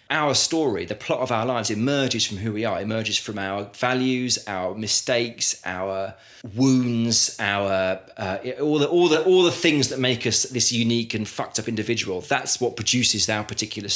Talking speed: 185 wpm